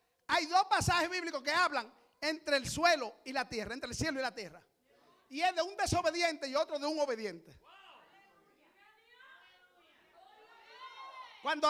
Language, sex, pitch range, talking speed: Spanish, male, 305-360 Hz, 150 wpm